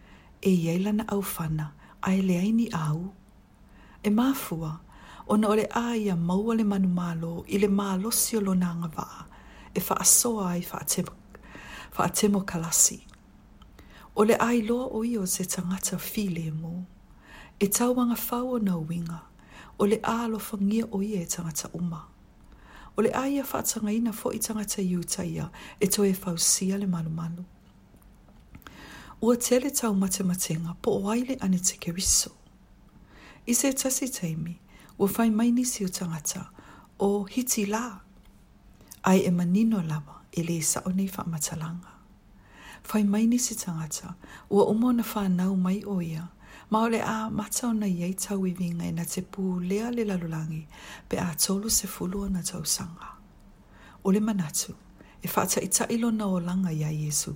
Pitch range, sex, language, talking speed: 170-220 Hz, female, English, 140 wpm